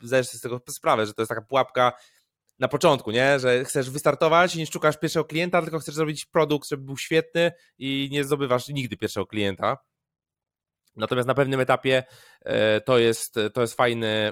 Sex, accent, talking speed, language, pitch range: male, native, 175 wpm, Polish, 120-150 Hz